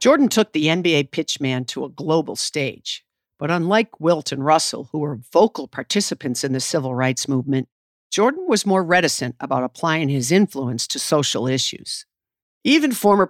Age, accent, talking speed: 50-69, American, 165 wpm